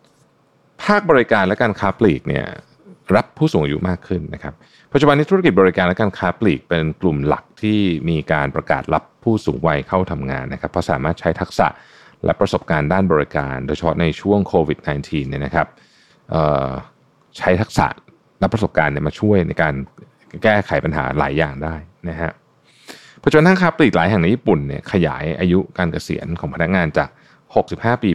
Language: Thai